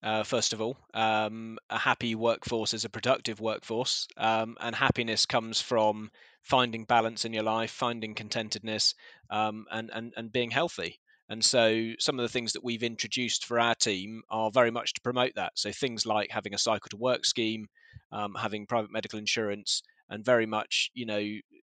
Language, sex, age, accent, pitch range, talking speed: English, male, 20-39, British, 110-135 Hz, 185 wpm